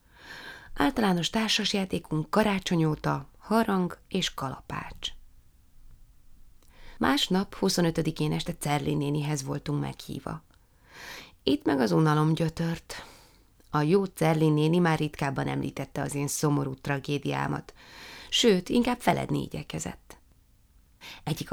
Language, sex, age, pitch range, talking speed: Hungarian, female, 30-49, 140-170 Hz, 90 wpm